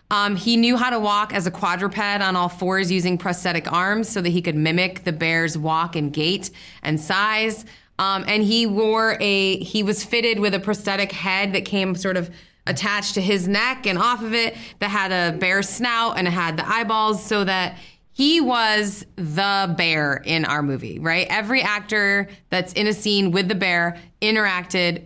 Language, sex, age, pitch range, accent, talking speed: English, female, 20-39, 180-220 Hz, American, 195 wpm